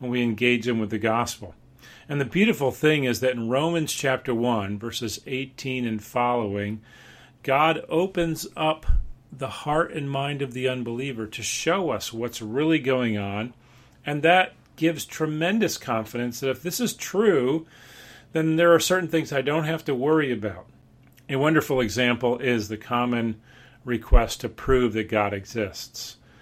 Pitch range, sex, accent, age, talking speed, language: 115-145 Hz, male, American, 40-59, 160 wpm, English